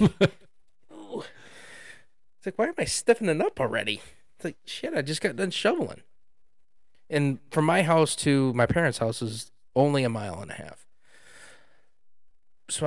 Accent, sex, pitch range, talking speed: American, male, 115-155 Hz, 150 wpm